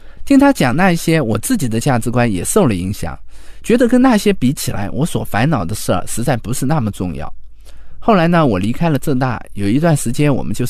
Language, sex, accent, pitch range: Chinese, male, native, 115-170 Hz